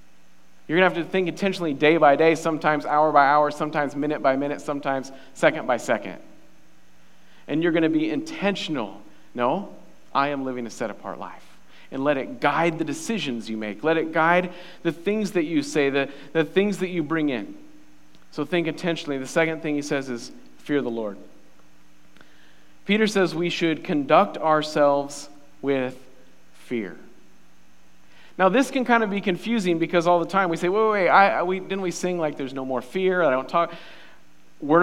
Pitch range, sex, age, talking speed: 125-180 Hz, male, 40-59, 185 wpm